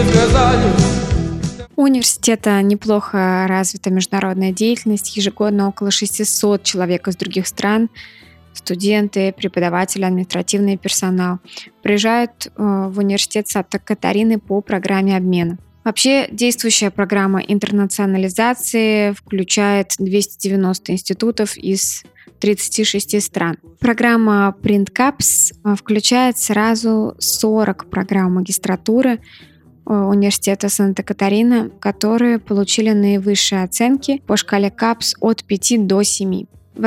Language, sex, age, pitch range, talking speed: Russian, female, 20-39, 190-220 Hz, 90 wpm